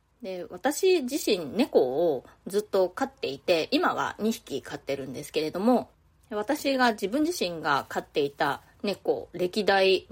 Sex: female